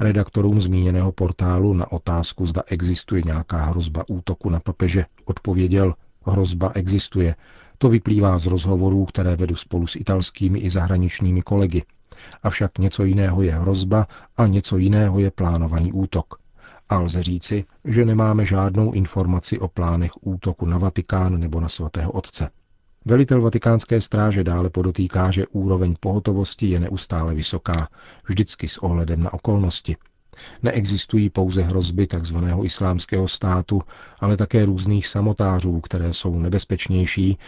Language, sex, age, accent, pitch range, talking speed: Czech, male, 40-59, native, 85-100 Hz, 135 wpm